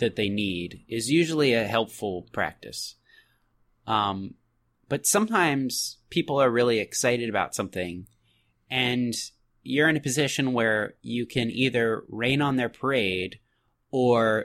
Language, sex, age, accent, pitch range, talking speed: English, male, 20-39, American, 105-135 Hz, 130 wpm